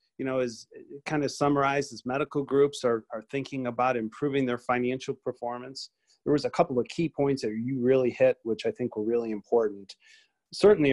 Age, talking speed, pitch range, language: 30-49, 190 wpm, 115-140 Hz, English